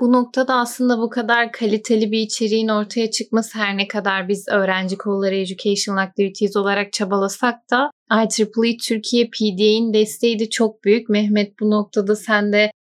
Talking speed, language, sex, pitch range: 155 wpm, Turkish, female, 200-230 Hz